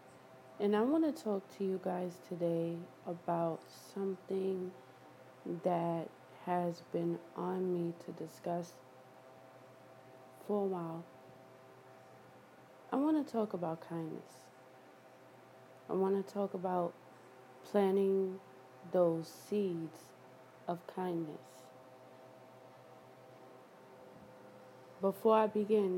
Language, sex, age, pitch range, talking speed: English, female, 20-39, 130-185 Hz, 90 wpm